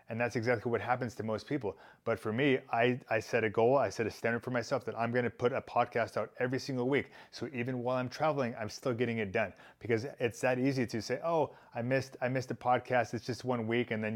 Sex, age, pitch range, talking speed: male, 30-49, 115-125 Hz, 255 wpm